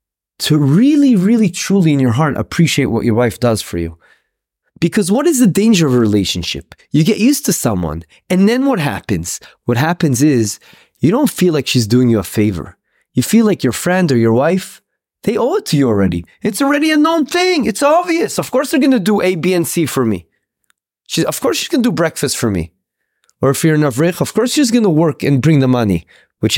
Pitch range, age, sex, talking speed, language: 125-195 Hz, 30-49, male, 225 wpm, English